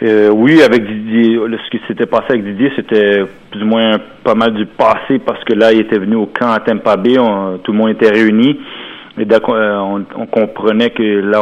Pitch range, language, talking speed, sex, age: 100-115 Hz, French, 220 wpm, male, 40-59